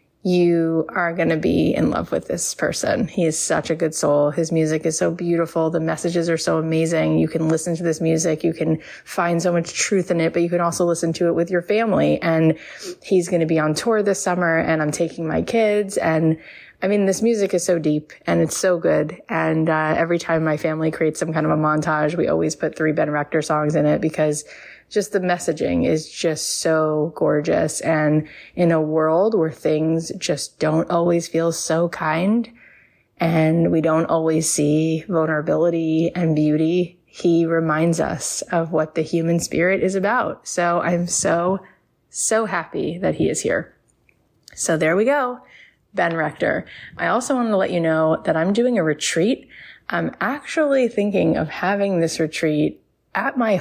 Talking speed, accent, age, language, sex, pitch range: 190 wpm, American, 20-39, English, female, 160-180 Hz